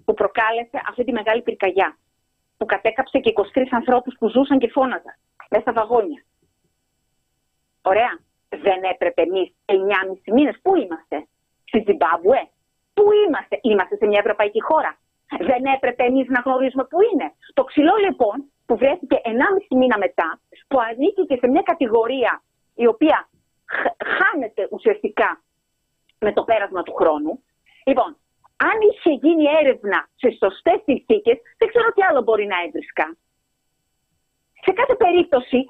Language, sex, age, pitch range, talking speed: Greek, female, 40-59, 225-340 Hz, 150 wpm